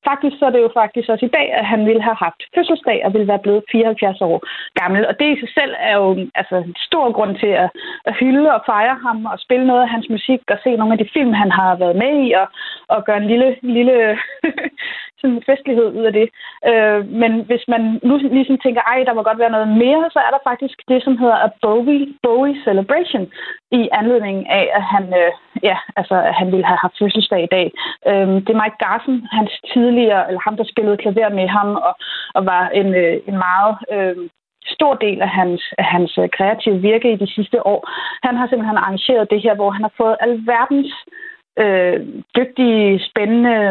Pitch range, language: 200-250 Hz, Danish